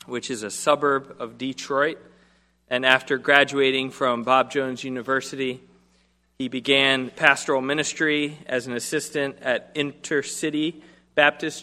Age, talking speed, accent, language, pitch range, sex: 40-59, 120 wpm, American, English, 125-150 Hz, male